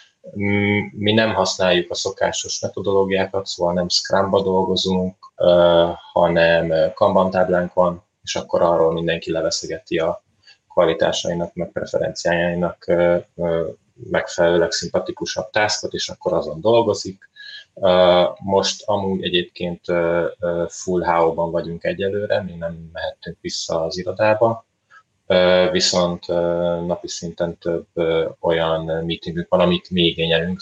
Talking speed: 100 wpm